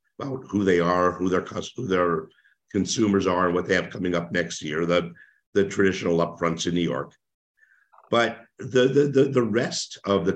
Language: English